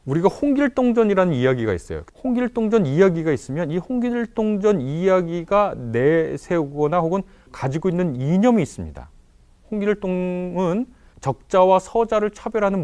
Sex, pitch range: male, 135-230 Hz